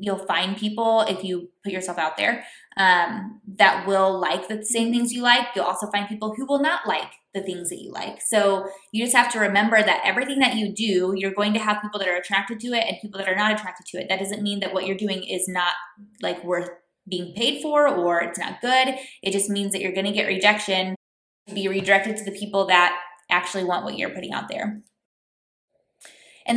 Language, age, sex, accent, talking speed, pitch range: English, 20-39, female, American, 230 wpm, 185-215 Hz